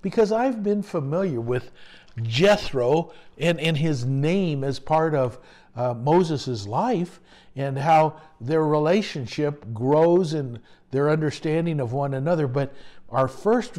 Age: 60-79